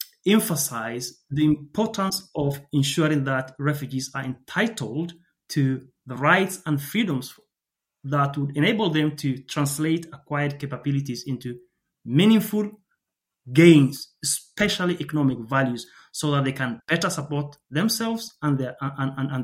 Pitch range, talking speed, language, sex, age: 130-170 Hz, 125 wpm, English, male, 30-49